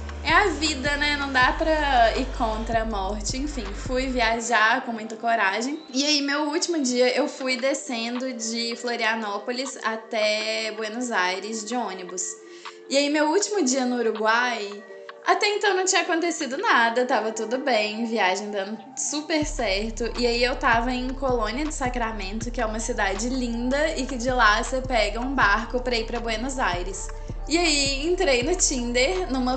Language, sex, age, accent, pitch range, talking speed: Portuguese, female, 10-29, Brazilian, 230-280 Hz, 170 wpm